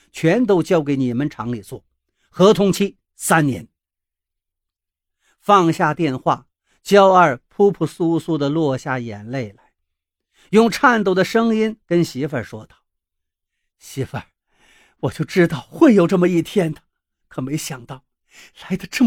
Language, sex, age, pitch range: Chinese, male, 50-69, 125-200 Hz